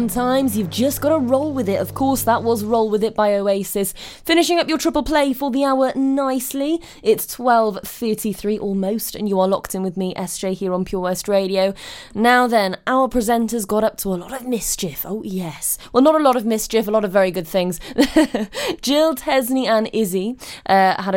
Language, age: English, 20-39